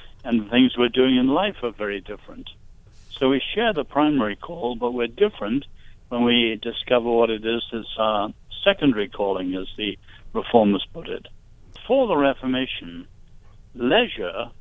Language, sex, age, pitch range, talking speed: English, male, 60-79, 105-140 Hz, 160 wpm